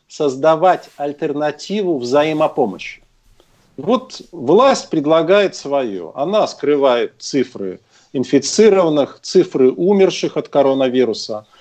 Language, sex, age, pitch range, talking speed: Russian, male, 50-69, 140-200 Hz, 80 wpm